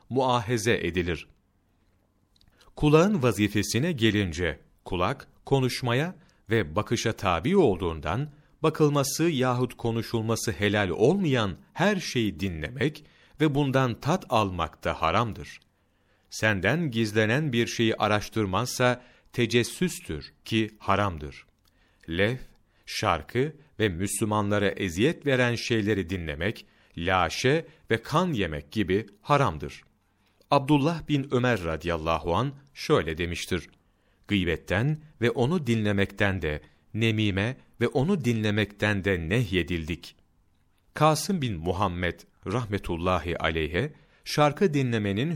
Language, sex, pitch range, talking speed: Turkish, male, 90-125 Hz, 95 wpm